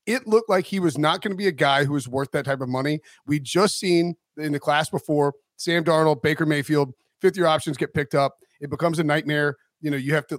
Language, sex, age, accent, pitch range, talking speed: English, male, 30-49, American, 150-195 Hz, 250 wpm